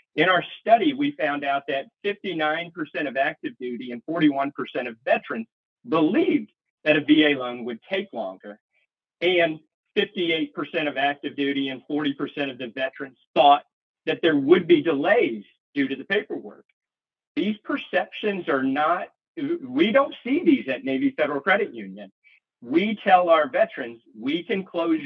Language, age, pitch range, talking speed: English, 40-59, 135-220 Hz, 150 wpm